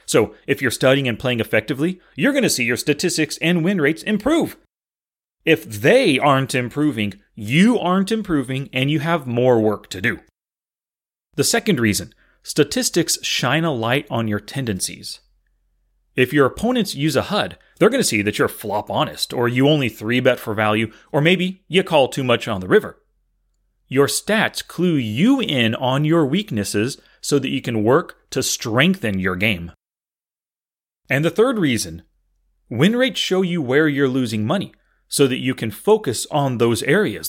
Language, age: English, 30-49